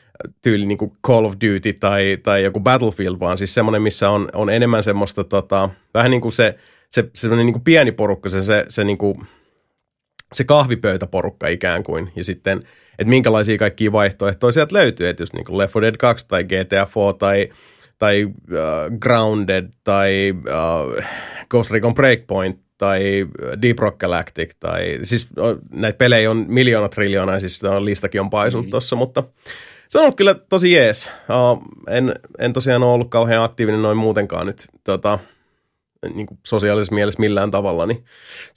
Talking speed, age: 165 wpm, 30-49